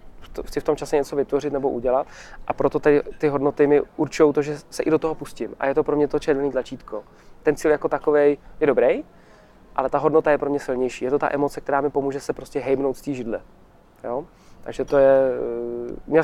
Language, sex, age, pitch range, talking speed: Czech, male, 20-39, 130-155 Hz, 225 wpm